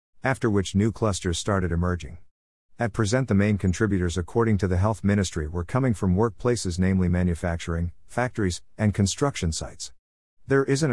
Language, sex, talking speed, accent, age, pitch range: English, male, 155 wpm, American, 50-69, 90-115 Hz